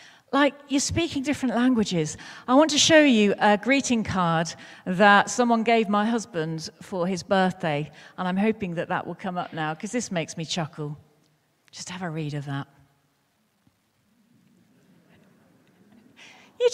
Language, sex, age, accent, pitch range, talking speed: English, female, 40-59, British, 180-260 Hz, 150 wpm